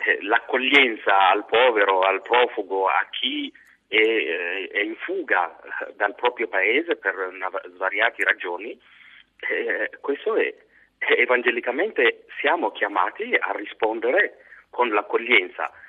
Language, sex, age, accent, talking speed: Italian, male, 40-59, native, 95 wpm